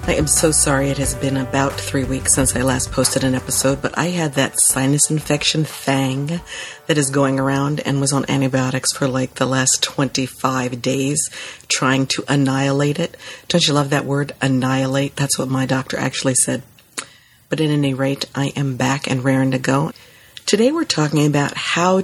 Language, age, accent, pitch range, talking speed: English, 50-69, American, 135-150 Hz, 190 wpm